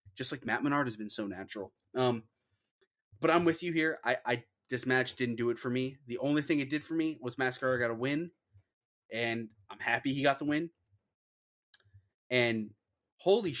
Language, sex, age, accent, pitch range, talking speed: English, male, 20-39, American, 115-145 Hz, 195 wpm